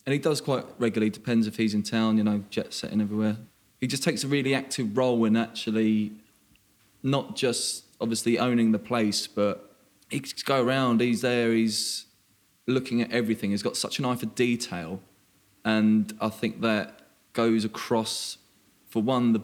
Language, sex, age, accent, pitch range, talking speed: English, male, 20-39, British, 105-120 Hz, 175 wpm